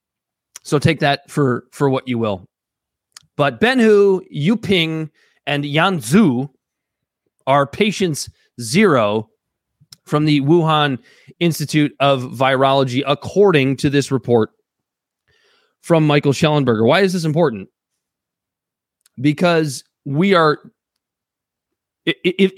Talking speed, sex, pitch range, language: 100 wpm, male, 130-175 Hz, English